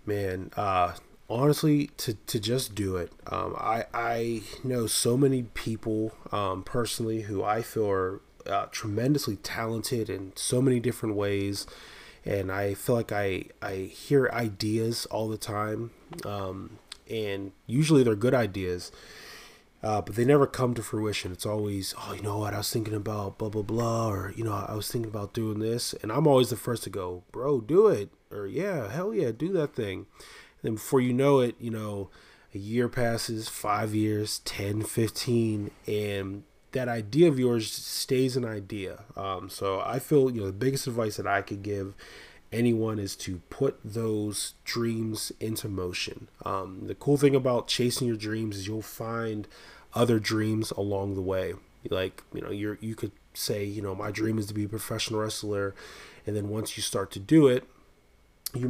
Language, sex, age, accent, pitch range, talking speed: English, male, 20-39, American, 100-120 Hz, 180 wpm